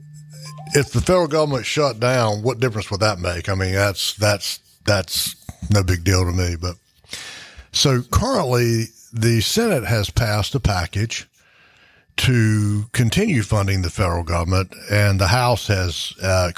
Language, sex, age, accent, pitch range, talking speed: English, male, 60-79, American, 95-120 Hz, 150 wpm